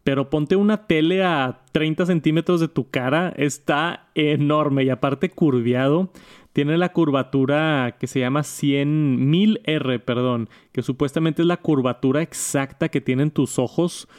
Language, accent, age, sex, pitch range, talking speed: Spanish, Mexican, 20-39, male, 130-150 Hz, 145 wpm